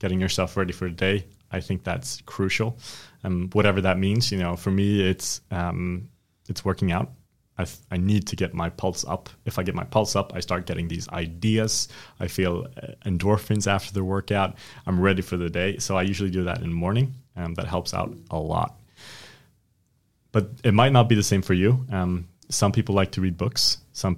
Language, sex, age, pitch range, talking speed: English, male, 20-39, 90-110 Hz, 215 wpm